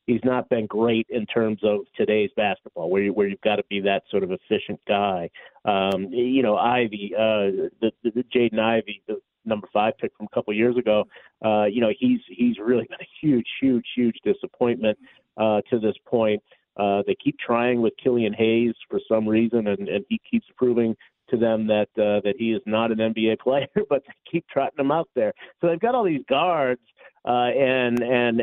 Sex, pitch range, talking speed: male, 105-130 Hz, 210 wpm